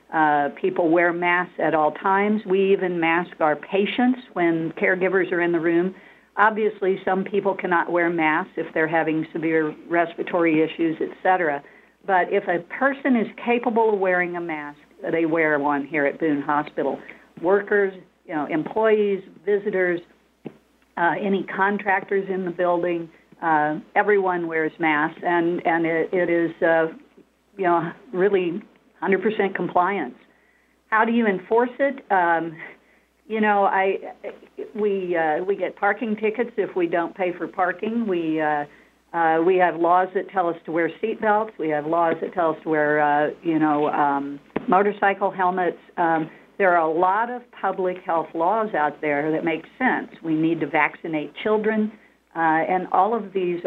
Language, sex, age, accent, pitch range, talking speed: English, female, 60-79, American, 160-200 Hz, 165 wpm